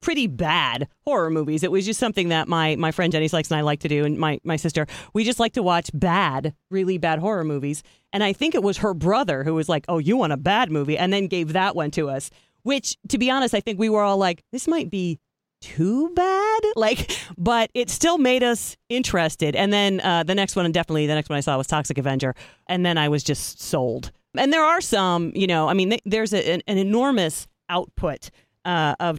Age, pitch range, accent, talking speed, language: 40-59, 160-220 Hz, American, 240 wpm, English